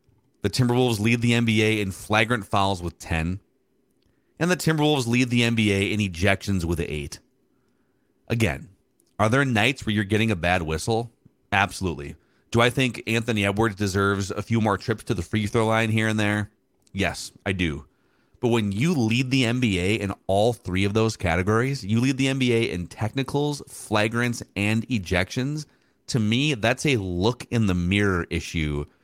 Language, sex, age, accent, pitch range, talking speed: English, male, 30-49, American, 100-130 Hz, 165 wpm